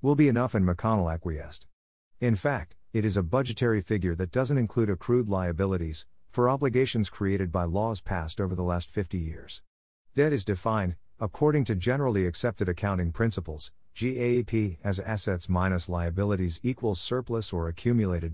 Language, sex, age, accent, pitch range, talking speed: English, male, 50-69, American, 90-120 Hz, 155 wpm